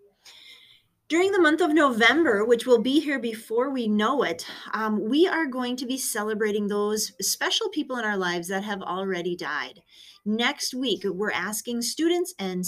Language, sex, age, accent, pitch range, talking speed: English, female, 30-49, American, 175-240 Hz, 170 wpm